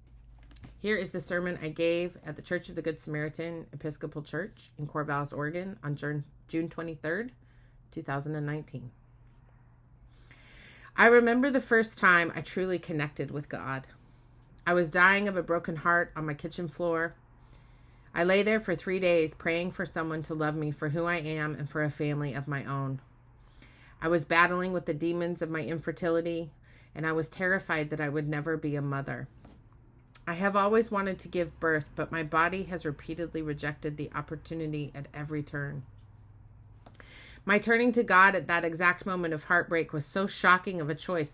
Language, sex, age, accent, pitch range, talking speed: English, female, 30-49, American, 140-175 Hz, 175 wpm